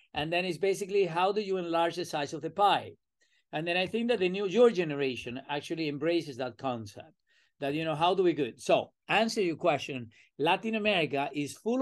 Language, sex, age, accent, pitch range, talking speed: English, male, 50-69, Spanish, 150-195 Hz, 210 wpm